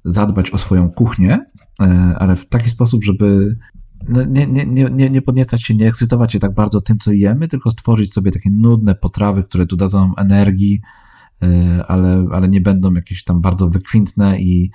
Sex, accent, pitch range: male, native, 95-115 Hz